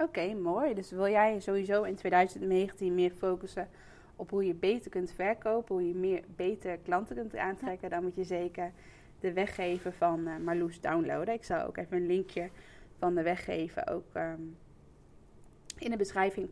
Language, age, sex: Dutch, 20-39, female